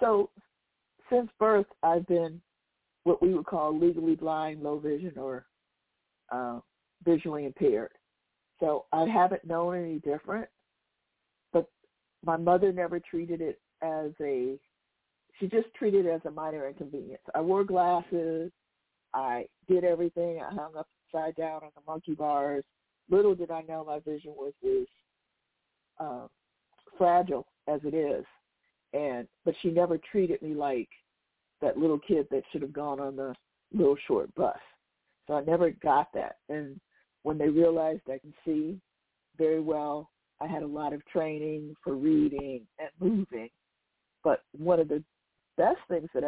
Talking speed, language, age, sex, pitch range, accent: 150 wpm, English, 60-79, female, 150-175 Hz, American